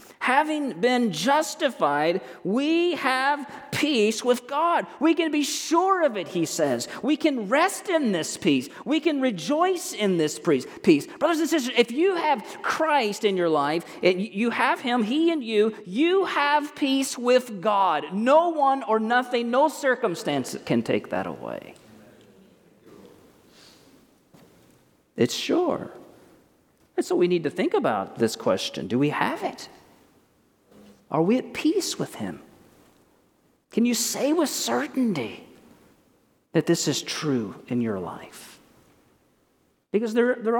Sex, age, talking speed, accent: male, 40-59, 140 wpm, American